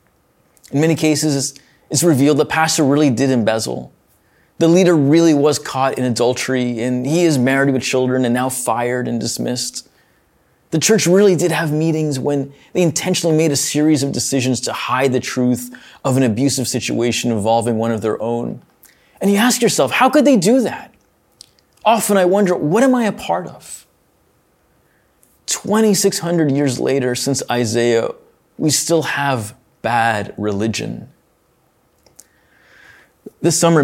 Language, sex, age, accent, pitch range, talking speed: English, male, 20-39, American, 120-165 Hz, 150 wpm